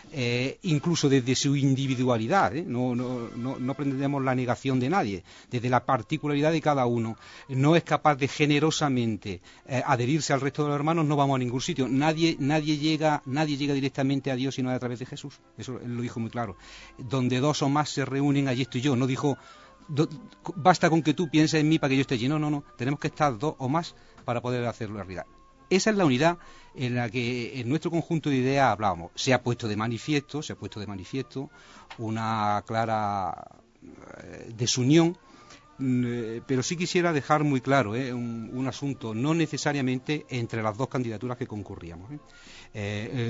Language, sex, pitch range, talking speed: Spanish, male, 120-145 Hz, 195 wpm